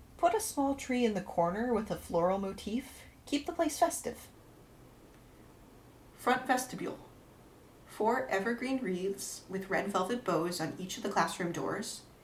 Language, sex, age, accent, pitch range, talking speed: English, female, 30-49, American, 175-245 Hz, 145 wpm